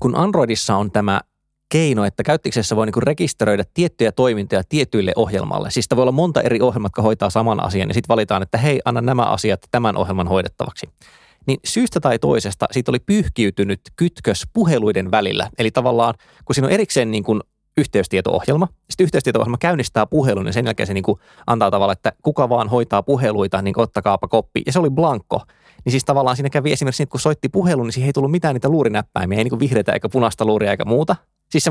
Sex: male